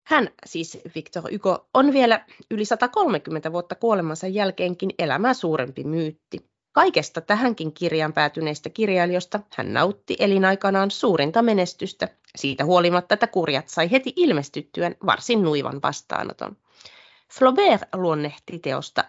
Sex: female